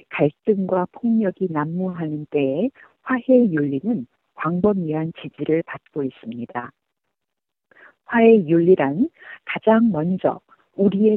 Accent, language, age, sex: native, Korean, 50-69, female